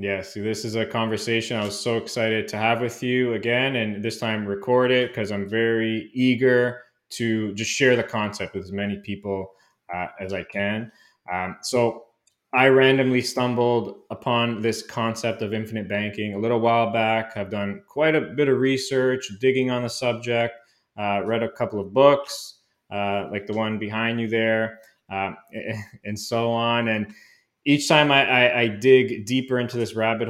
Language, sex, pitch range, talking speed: English, male, 100-125 Hz, 180 wpm